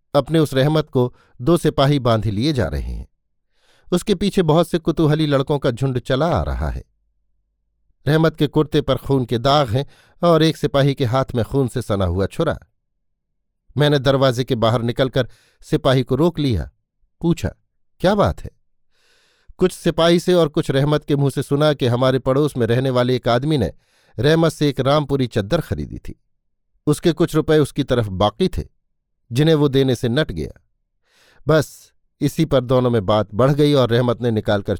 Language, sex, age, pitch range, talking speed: Hindi, male, 50-69, 120-155 Hz, 185 wpm